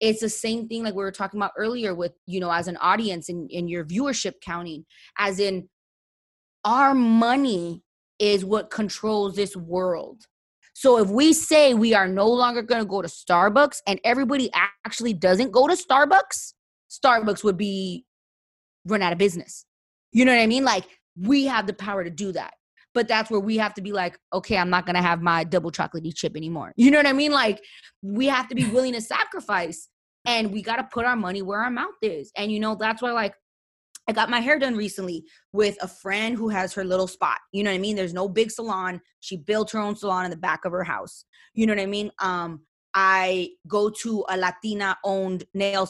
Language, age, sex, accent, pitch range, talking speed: English, 20-39, female, American, 185-230 Hz, 215 wpm